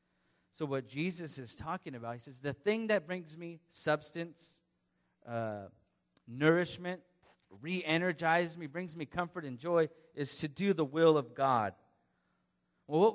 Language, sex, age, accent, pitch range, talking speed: English, male, 30-49, American, 130-175 Hz, 145 wpm